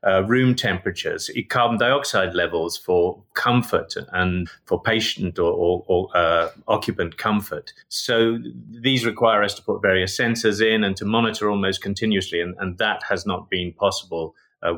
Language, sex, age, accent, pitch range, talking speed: English, male, 30-49, British, 95-120 Hz, 155 wpm